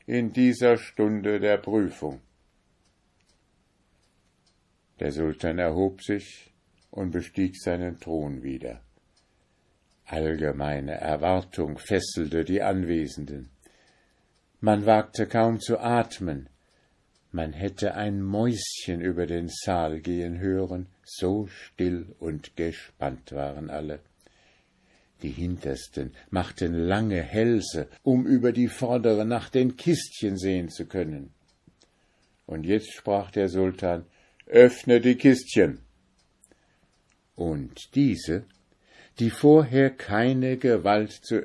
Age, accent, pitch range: 60-79, German, 85-110 Hz